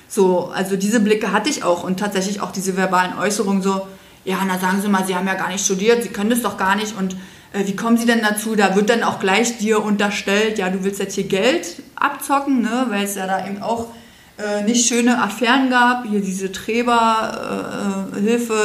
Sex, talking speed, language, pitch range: female, 215 wpm, German, 195-230 Hz